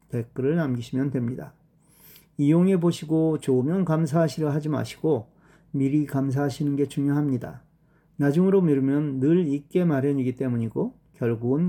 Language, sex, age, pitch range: Korean, male, 40-59, 130-170 Hz